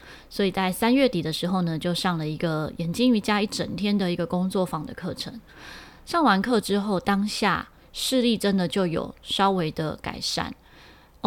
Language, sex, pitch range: Chinese, female, 175-220 Hz